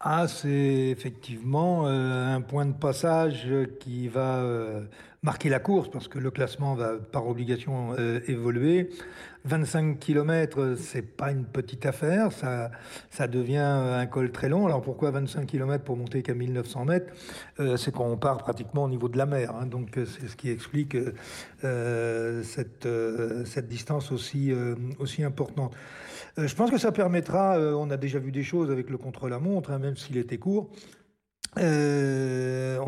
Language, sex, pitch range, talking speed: French, male, 125-150 Hz, 175 wpm